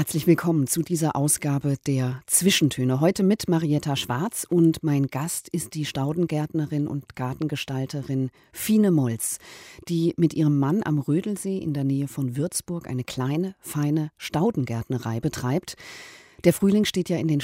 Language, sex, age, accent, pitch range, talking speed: German, female, 40-59, German, 140-170 Hz, 150 wpm